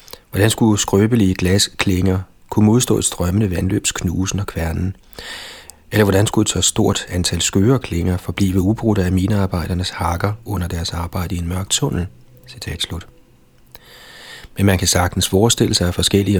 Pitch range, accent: 90-110 Hz, native